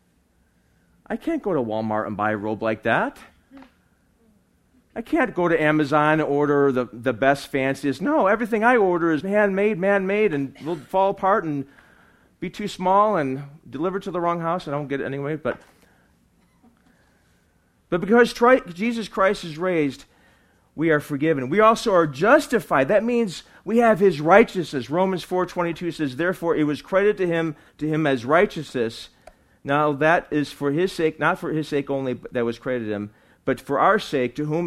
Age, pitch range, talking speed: 40-59, 135-185 Hz, 180 wpm